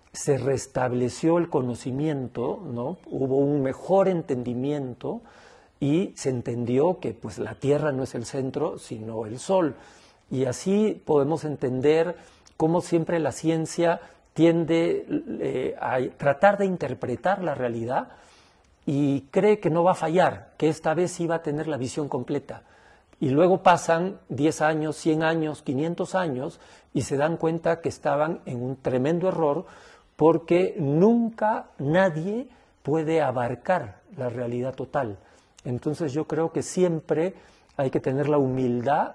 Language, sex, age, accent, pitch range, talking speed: English, male, 50-69, Mexican, 130-170 Hz, 145 wpm